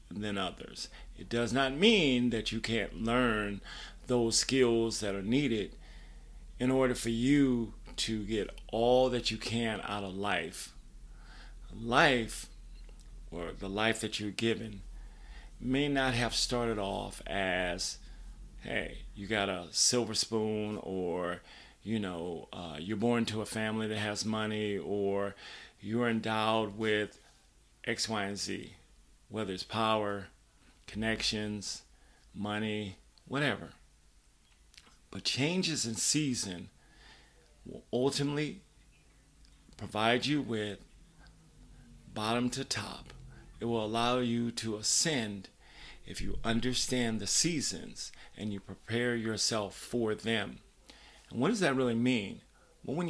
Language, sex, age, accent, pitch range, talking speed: English, male, 40-59, American, 100-120 Hz, 125 wpm